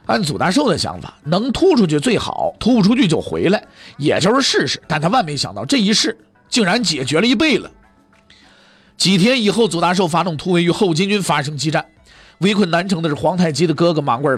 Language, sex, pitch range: Chinese, male, 155-210 Hz